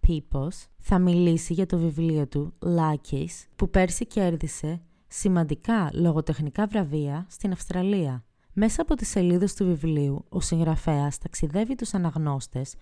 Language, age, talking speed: Greek, 20-39, 125 wpm